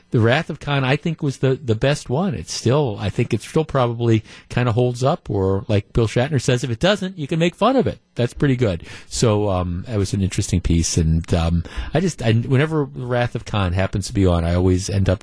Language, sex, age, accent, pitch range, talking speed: English, male, 50-69, American, 95-140 Hz, 250 wpm